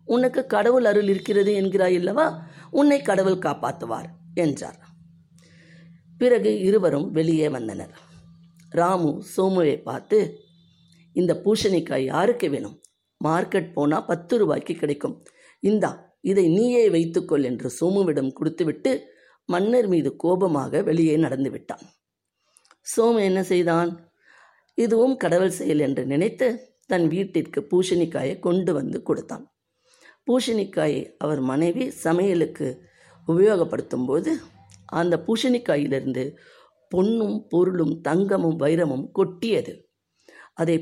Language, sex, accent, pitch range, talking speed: Tamil, female, native, 165-215 Hz, 95 wpm